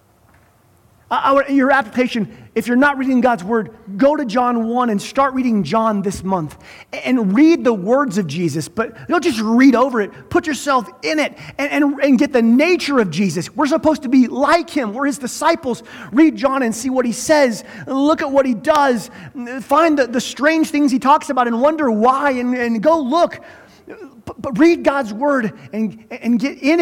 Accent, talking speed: American, 190 wpm